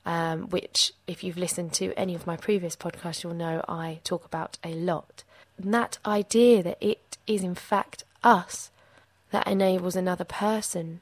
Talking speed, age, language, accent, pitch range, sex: 165 wpm, 20-39, English, British, 175-205 Hz, female